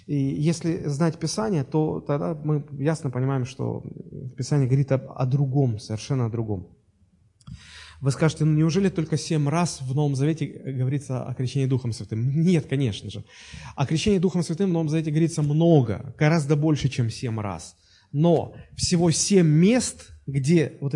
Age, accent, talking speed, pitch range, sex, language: 20-39, native, 155 wpm, 130-160 Hz, male, Russian